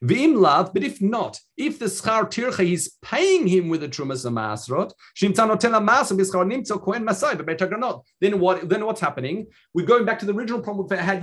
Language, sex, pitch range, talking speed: English, male, 135-195 Hz, 150 wpm